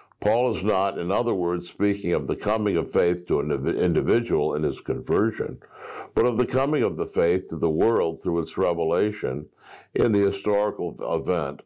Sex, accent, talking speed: male, American, 180 wpm